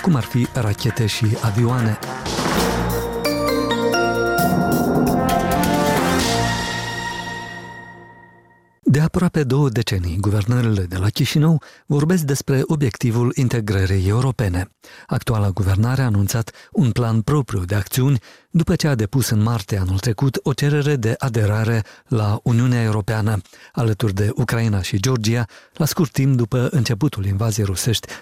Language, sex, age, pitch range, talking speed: Romanian, male, 50-69, 110-135 Hz, 115 wpm